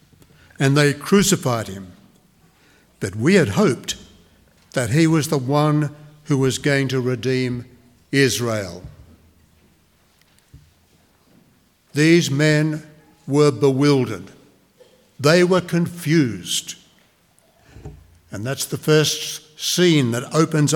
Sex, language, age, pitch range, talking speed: male, English, 60-79, 130-175 Hz, 95 wpm